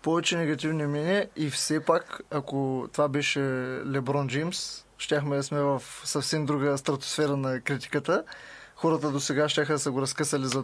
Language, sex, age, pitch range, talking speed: Bulgarian, male, 20-39, 140-165 Hz, 160 wpm